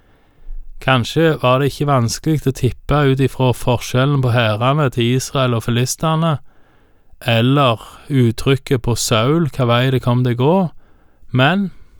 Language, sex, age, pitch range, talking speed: Danish, male, 20-39, 115-135 Hz, 135 wpm